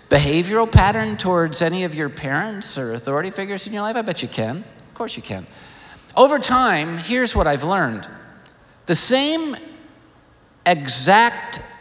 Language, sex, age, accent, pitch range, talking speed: English, male, 50-69, American, 155-230 Hz, 150 wpm